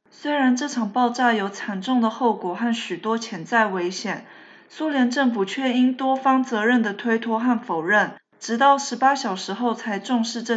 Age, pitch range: 20-39, 195-240 Hz